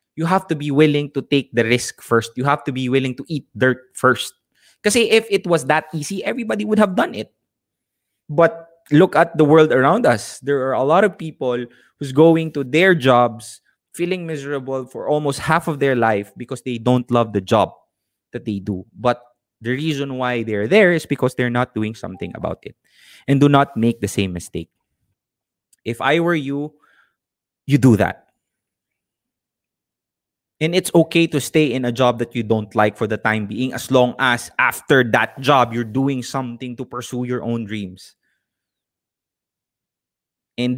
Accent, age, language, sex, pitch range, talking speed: Filipino, 20-39, English, male, 115-160 Hz, 180 wpm